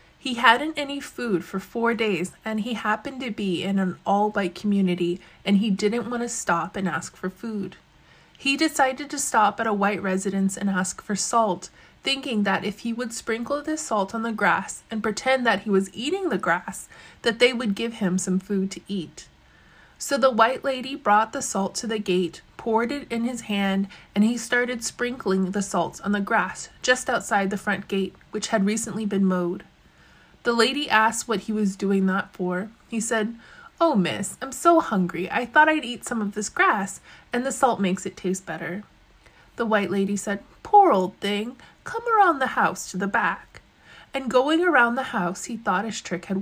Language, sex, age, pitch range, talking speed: English, female, 20-39, 195-245 Hz, 200 wpm